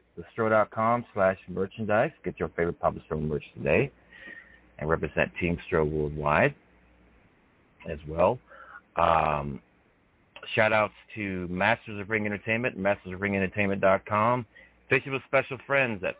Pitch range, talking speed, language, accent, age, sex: 95-120 Hz, 120 wpm, English, American, 60-79, male